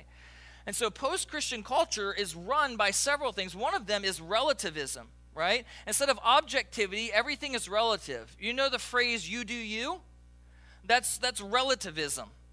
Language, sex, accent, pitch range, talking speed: English, male, American, 190-255 Hz, 150 wpm